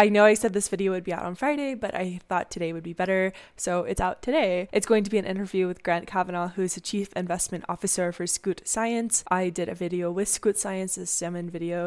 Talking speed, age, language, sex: 245 wpm, 10-29, English, female